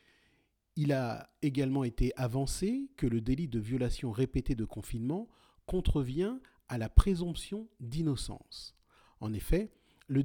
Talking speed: 125 wpm